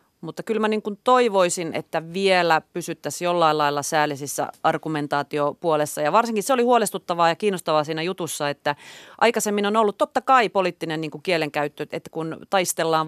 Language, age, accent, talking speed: Finnish, 30-49, native, 160 wpm